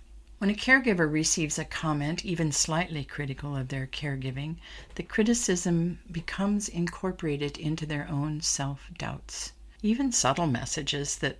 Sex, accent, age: female, American, 50-69